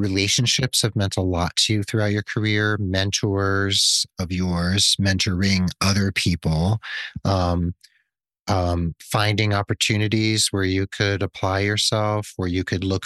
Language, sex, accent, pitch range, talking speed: English, male, American, 85-105 Hz, 135 wpm